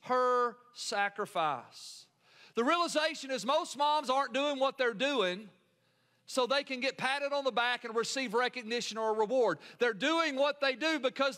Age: 40-59